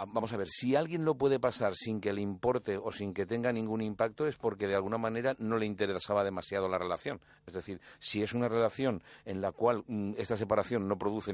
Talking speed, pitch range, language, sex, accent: 220 wpm, 100-120 Hz, Spanish, male, Spanish